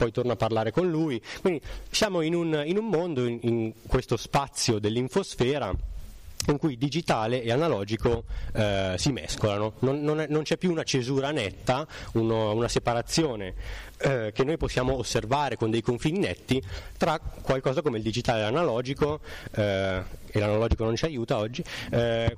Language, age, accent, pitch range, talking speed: Italian, 30-49, native, 105-140 Hz, 165 wpm